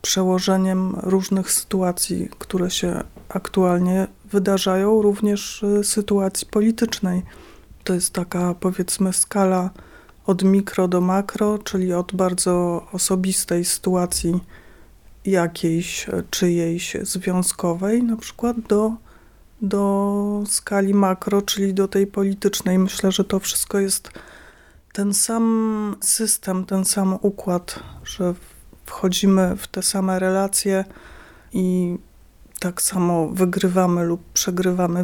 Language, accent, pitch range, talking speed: Polish, native, 180-200 Hz, 105 wpm